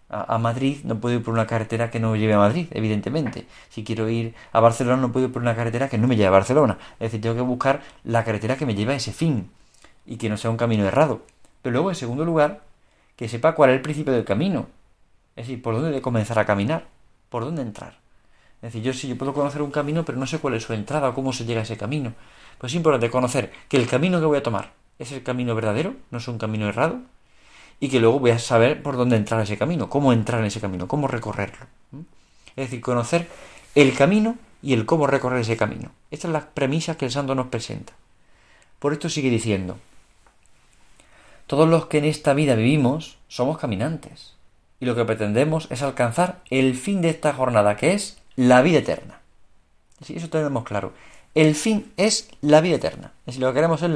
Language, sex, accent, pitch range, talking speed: Spanish, male, Spanish, 115-150 Hz, 220 wpm